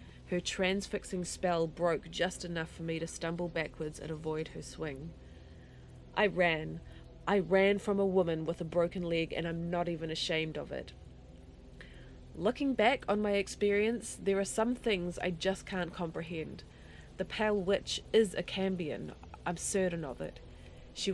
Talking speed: 160 wpm